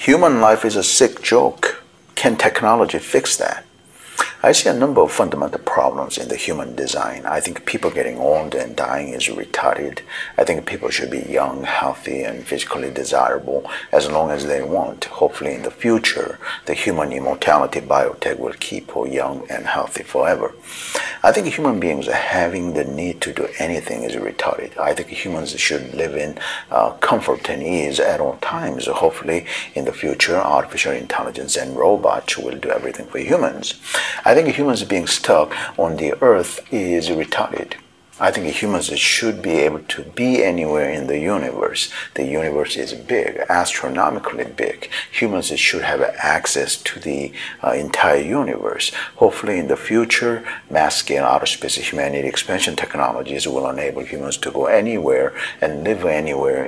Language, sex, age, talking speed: English, male, 50-69, 165 wpm